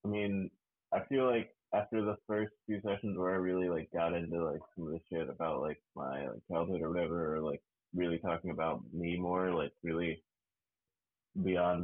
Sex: male